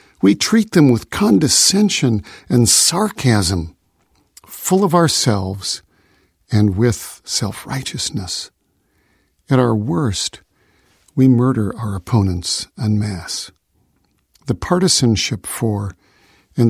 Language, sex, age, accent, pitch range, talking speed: English, male, 50-69, American, 105-140 Hz, 95 wpm